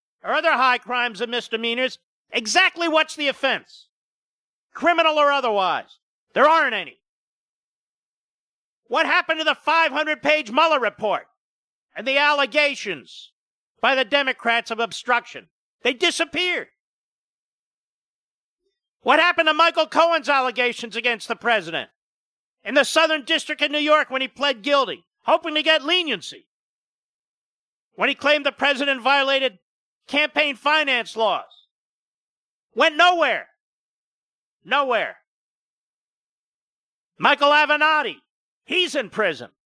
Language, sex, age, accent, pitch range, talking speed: English, male, 50-69, American, 245-315 Hz, 110 wpm